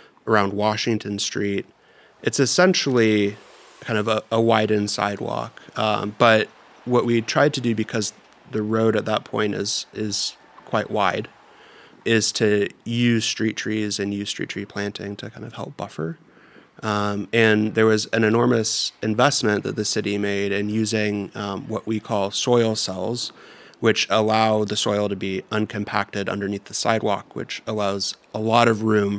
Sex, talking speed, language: male, 160 wpm, English